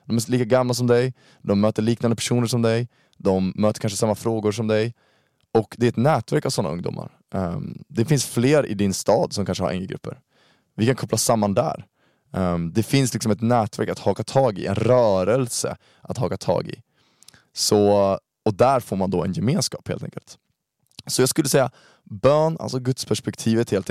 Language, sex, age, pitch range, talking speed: Swedish, male, 20-39, 100-120 Hz, 190 wpm